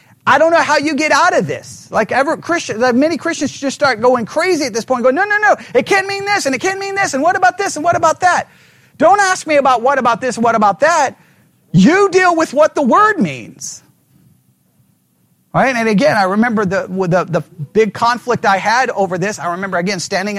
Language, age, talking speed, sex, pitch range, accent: English, 40-59, 225 wpm, male, 205-315 Hz, American